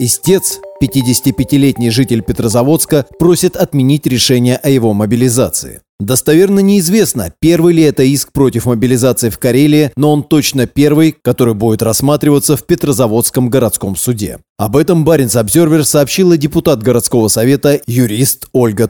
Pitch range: 120-155 Hz